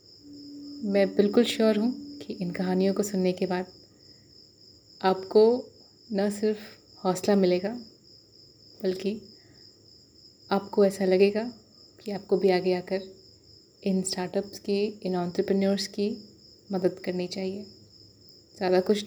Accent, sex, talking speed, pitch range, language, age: native, female, 115 wpm, 175-205 Hz, Hindi, 30-49